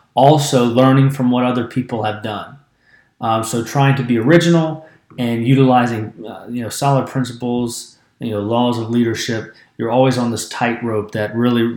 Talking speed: 170 wpm